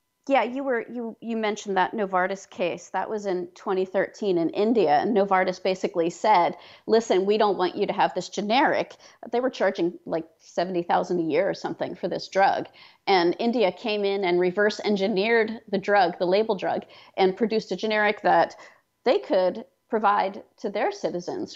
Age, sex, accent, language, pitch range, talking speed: 40-59, female, American, English, 185-230 Hz, 175 wpm